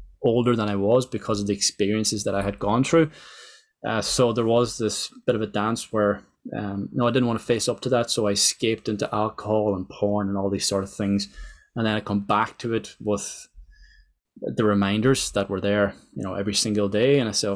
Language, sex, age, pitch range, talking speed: English, male, 20-39, 105-125 Hz, 230 wpm